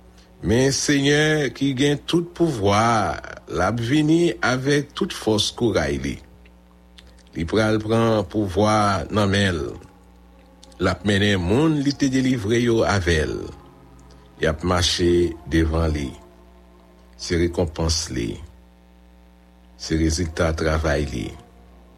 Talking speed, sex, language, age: 95 wpm, male, English, 60-79